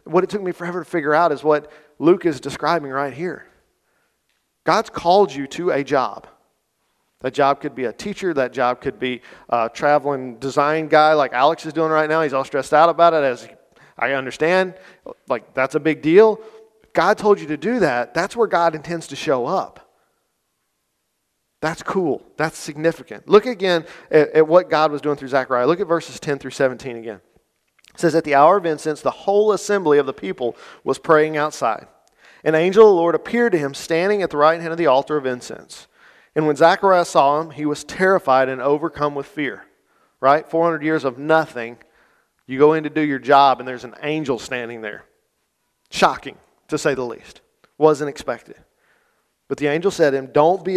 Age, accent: 40-59, American